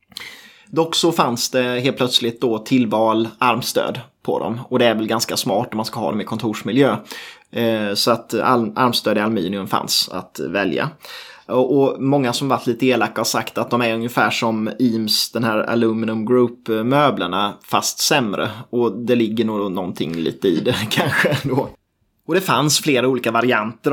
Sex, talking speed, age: male, 175 wpm, 20-39